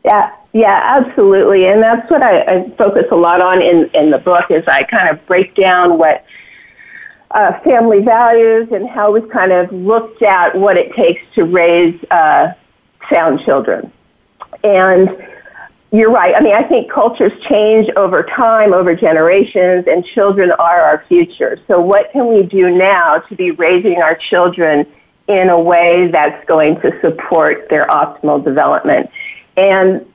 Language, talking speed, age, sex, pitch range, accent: English, 160 wpm, 50-69, female, 180-230 Hz, American